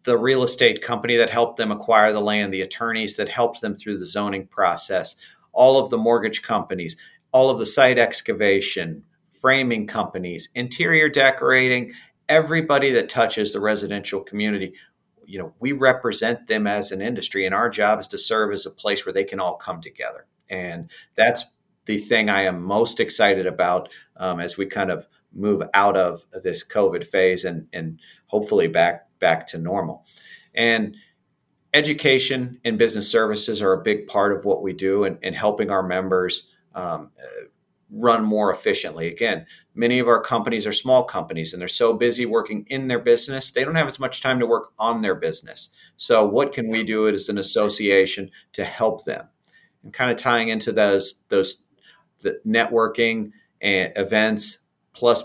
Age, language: 40-59, English